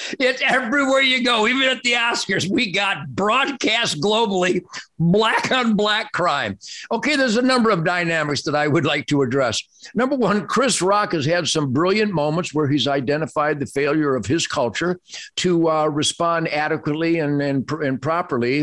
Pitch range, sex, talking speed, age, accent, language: 135-195 Hz, male, 170 wpm, 50-69, American, English